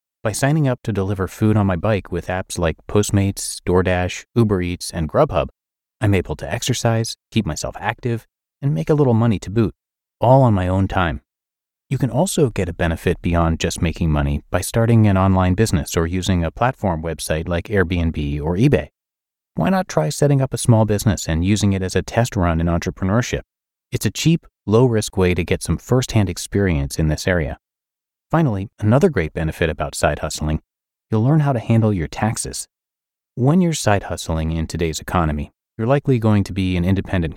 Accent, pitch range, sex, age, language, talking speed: American, 85-115 Hz, male, 30-49, English, 190 wpm